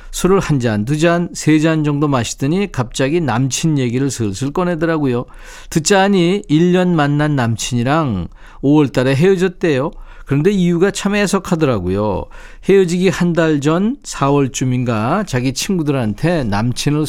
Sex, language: male, Korean